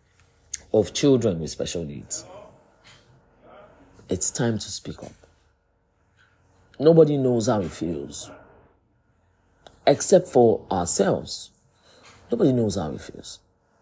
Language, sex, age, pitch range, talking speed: English, male, 50-69, 105-160 Hz, 100 wpm